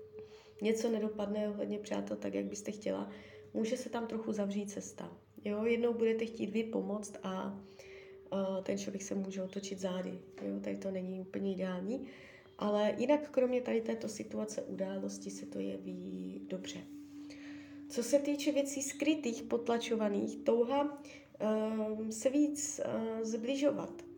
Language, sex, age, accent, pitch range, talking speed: Czech, female, 20-39, native, 190-245 Hz, 140 wpm